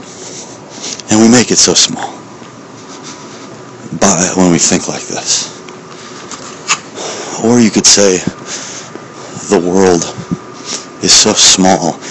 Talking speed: 105 wpm